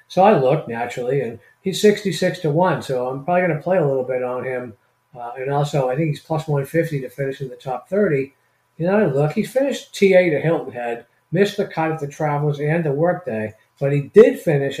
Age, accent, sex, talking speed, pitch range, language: 50-69, American, male, 230 wpm, 130-160 Hz, English